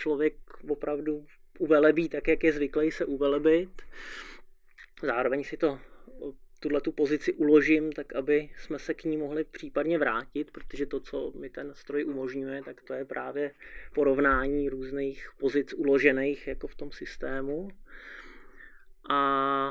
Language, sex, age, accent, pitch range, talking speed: Czech, male, 30-49, native, 135-150 Hz, 135 wpm